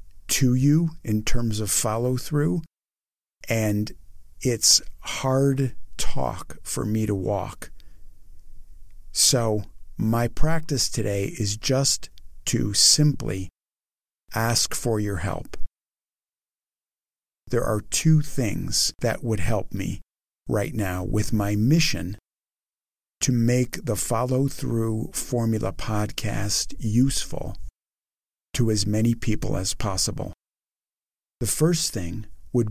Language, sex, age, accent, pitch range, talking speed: English, male, 50-69, American, 100-130 Hz, 105 wpm